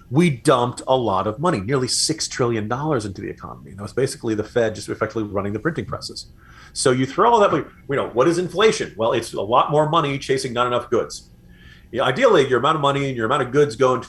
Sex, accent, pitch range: male, American, 105-145 Hz